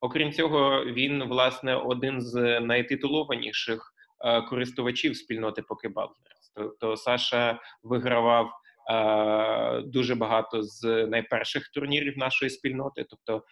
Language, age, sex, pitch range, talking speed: Ukrainian, 20-39, male, 115-140 Hz, 100 wpm